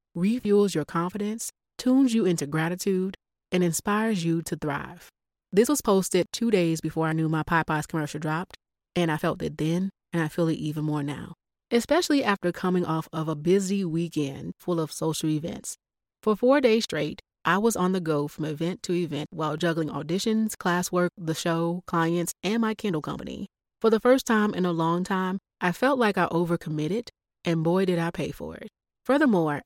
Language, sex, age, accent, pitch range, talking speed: English, female, 30-49, American, 160-205 Hz, 190 wpm